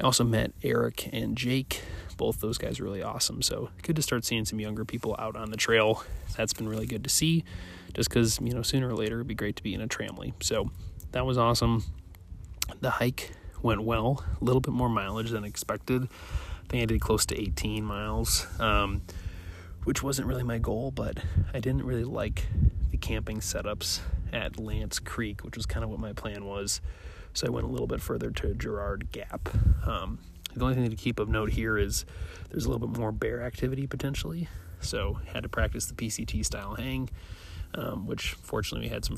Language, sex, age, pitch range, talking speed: English, male, 20-39, 90-115 Hz, 205 wpm